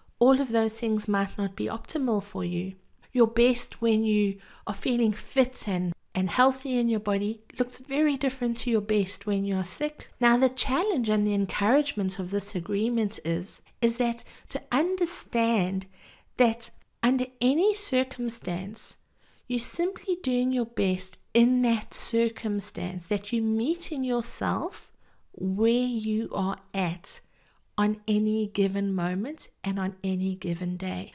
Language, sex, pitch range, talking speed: English, female, 195-245 Hz, 150 wpm